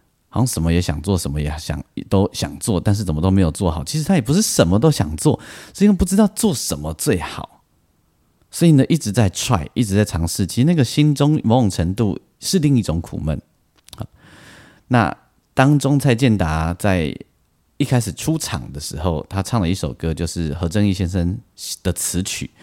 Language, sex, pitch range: Chinese, male, 85-125 Hz